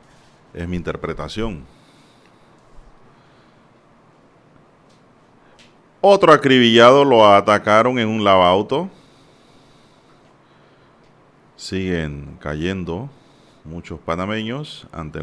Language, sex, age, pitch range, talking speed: Spanish, male, 40-59, 85-120 Hz, 60 wpm